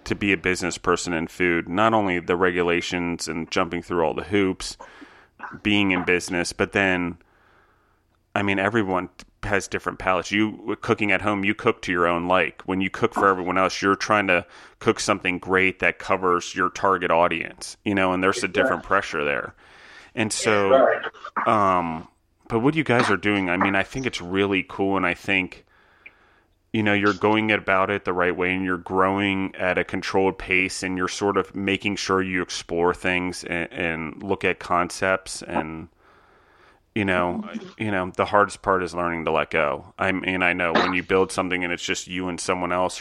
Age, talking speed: 30-49, 195 wpm